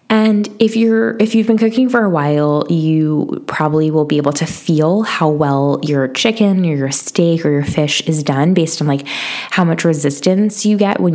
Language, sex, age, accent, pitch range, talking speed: English, female, 10-29, American, 150-195 Hz, 205 wpm